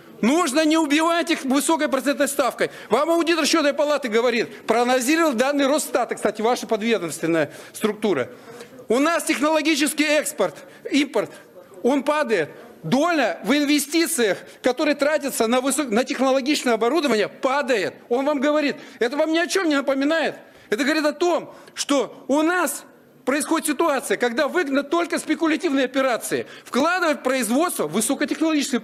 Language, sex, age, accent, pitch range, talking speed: Russian, male, 40-59, native, 250-315 Hz, 140 wpm